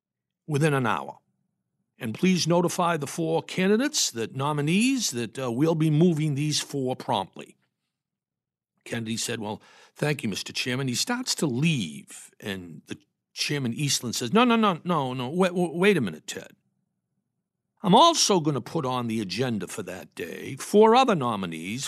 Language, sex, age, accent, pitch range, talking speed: English, male, 60-79, American, 130-185 Hz, 160 wpm